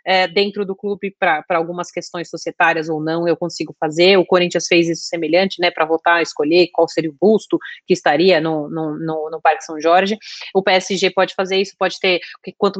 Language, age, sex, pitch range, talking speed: Portuguese, 30-49, female, 180-215 Hz, 200 wpm